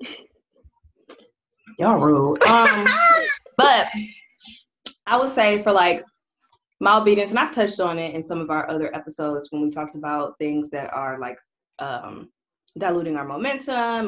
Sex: female